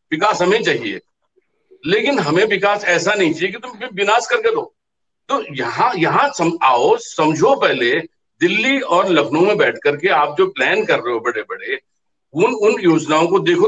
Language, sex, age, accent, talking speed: Hindi, male, 50-69, native, 175 wpm